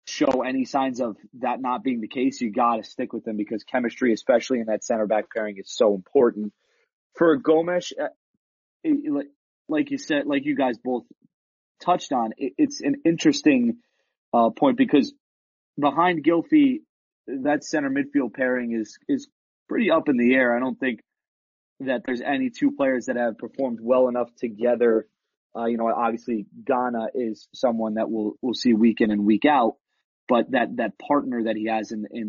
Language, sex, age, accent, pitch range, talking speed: English, male, 30-49, American, 110-145 Hz, 175 wpm